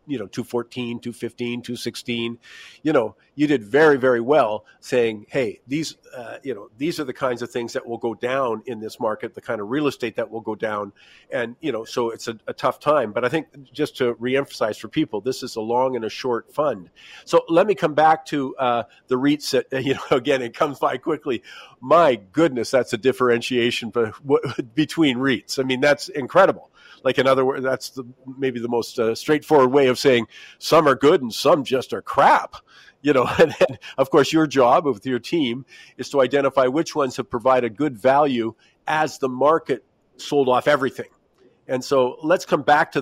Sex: male